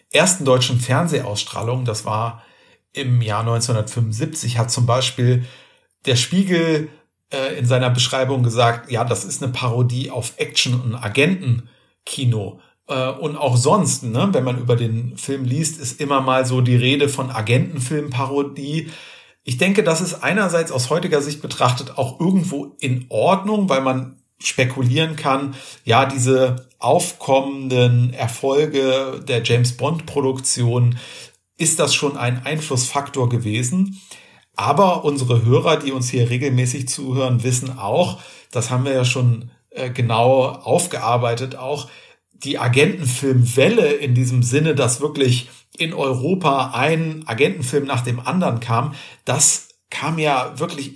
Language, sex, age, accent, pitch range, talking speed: German, male, 50-69, German, 125-145 Hz, 135 wpm